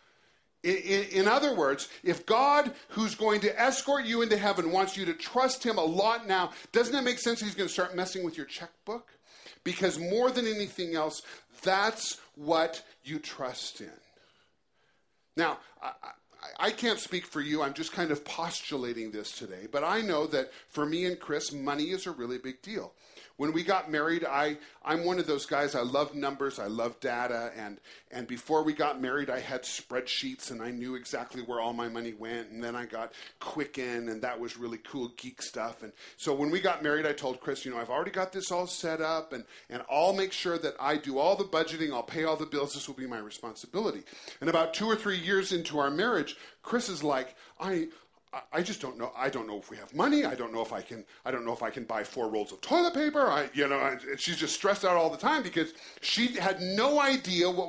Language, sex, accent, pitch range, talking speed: English, male, American, 140-195 Hz, 225 wpm